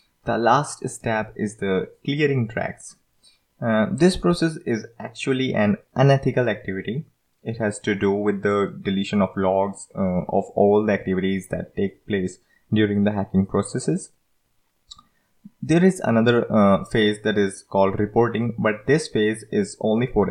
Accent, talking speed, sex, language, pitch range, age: Indian, 150 wpm, male, English, 100-125 Hz, 20-39